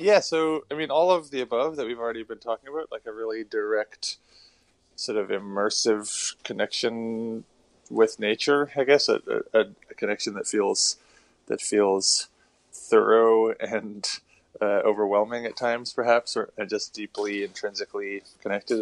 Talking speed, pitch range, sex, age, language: 145 wpm, 100-125 Hz, male, 20-39, English